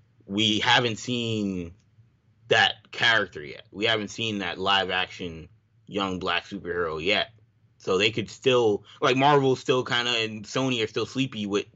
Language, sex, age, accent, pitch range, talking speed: English, male, 20-39, American, 95-120 Hz, 160 wpm